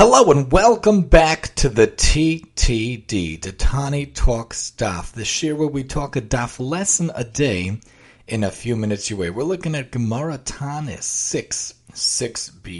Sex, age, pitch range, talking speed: male, 40-59, 120-165 Hz, 150 wpm